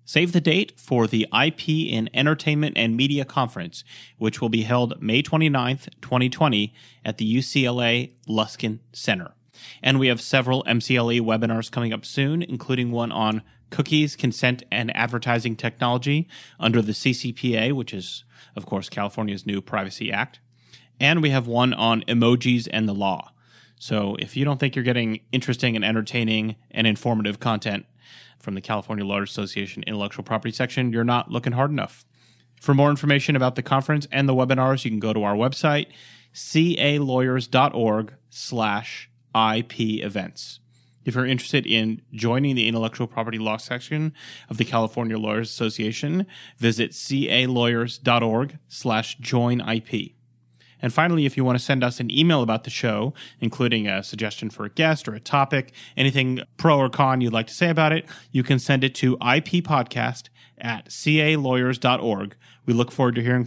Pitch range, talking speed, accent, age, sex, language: 115-135 Hz, 160 wpm, American, 30-49, male, English